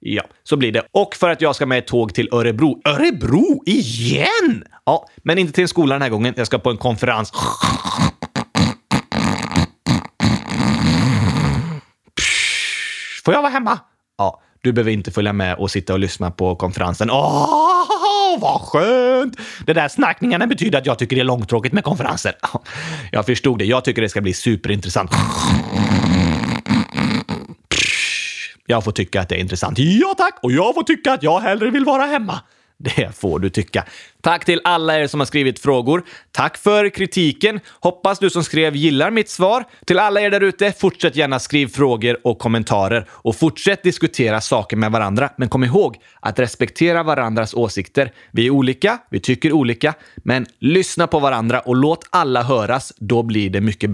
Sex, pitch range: male, 115-185 Hz